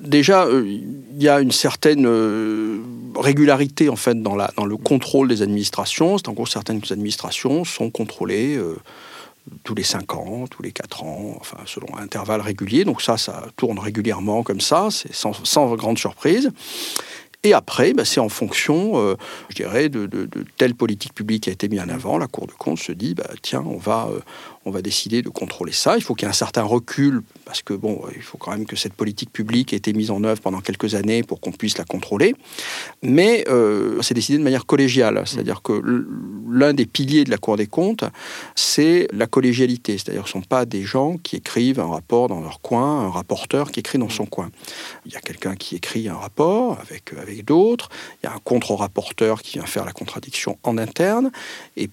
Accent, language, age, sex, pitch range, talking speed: French, French, 50-69, male, 105-145 Hz, 215 wpm